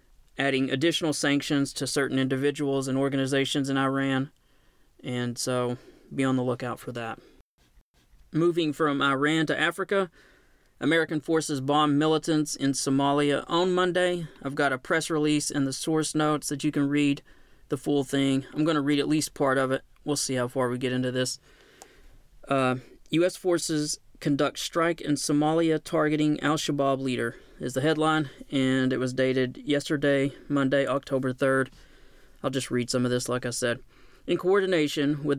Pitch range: 135-155 Hz